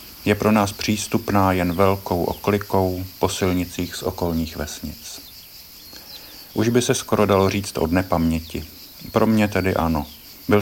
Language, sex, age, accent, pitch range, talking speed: Czech, male, 50-69, native, 85-100 Hz, 140 wpm